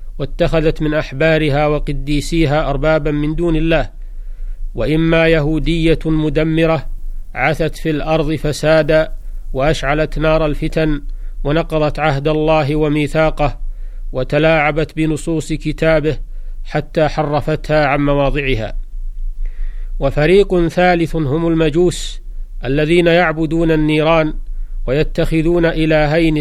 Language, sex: Arabic, male